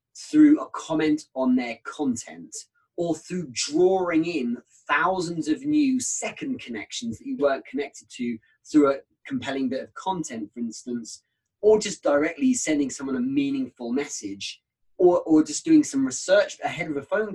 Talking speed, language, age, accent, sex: 160 wpm, English, 30-49, British, male